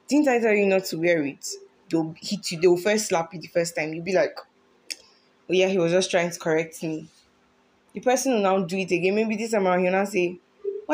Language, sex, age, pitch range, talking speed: English, female, 20-39, 170-215 Hz, 250 wpm